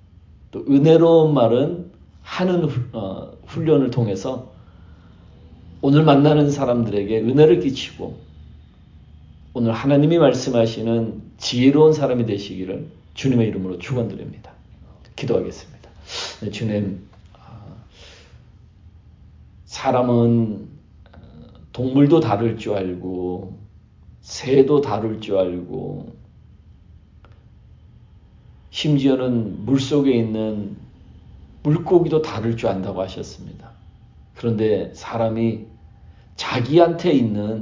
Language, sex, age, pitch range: Korean, male, 40-59, 95-130 Hz